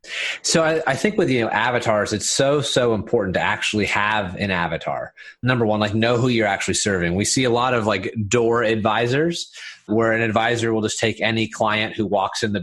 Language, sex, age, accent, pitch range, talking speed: English, male, 30-49, American, 105-135 Hz, 215 wpm